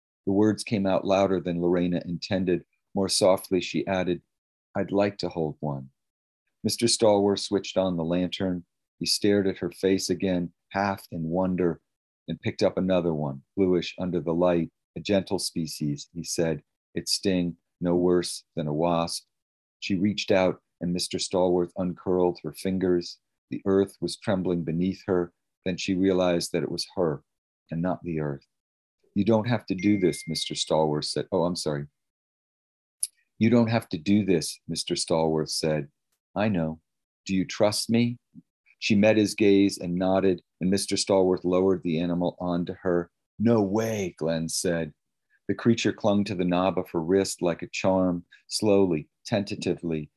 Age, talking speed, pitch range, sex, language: 40-59, 165 wpm, 85-95 Hz, male, English